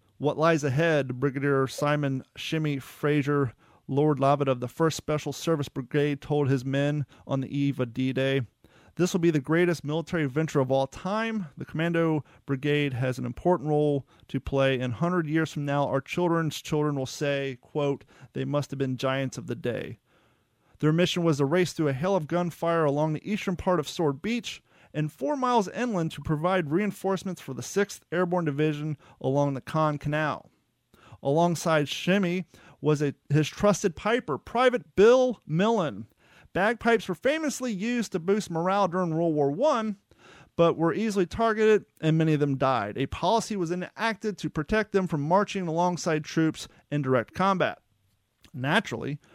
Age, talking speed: 30-49, 170 wpm